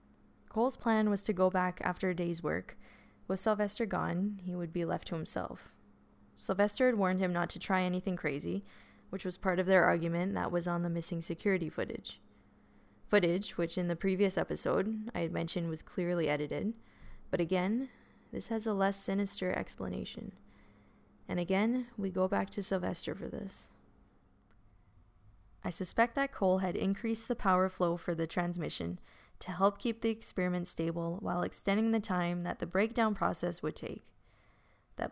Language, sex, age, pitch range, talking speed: English, female, 20-39, 165-205 Hz, 170 wpm